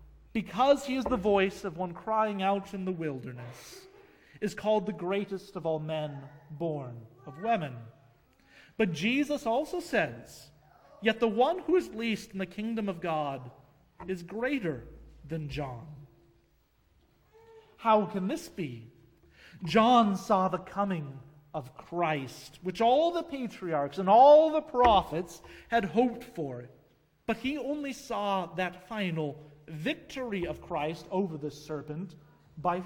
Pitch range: 155-235 Hz